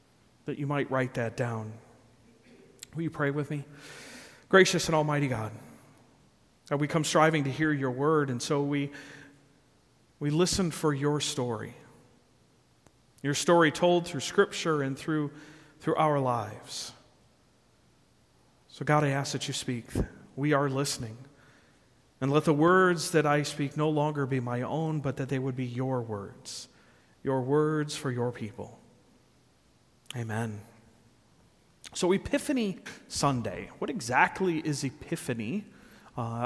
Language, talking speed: English, 140 wpm